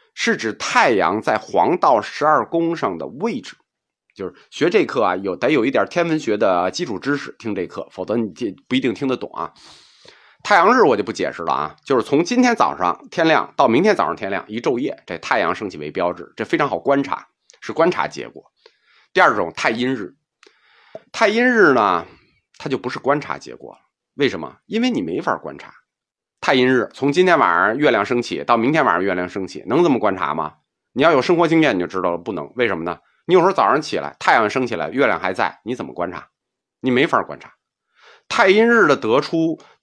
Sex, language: male, Chinese